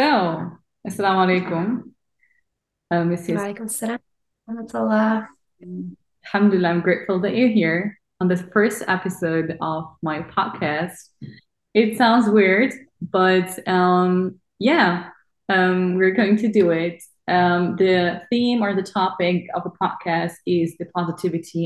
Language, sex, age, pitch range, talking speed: English, female, 20-39, 165-205 Hz, 115 wpm